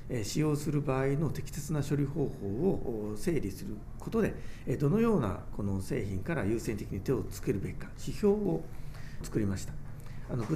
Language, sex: Japanese, male